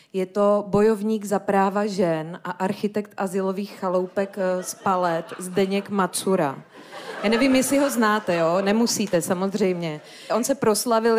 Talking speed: 135 wpm